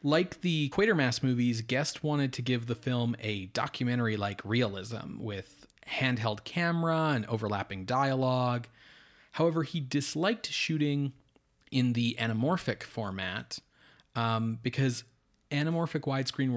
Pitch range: 115-145 Hz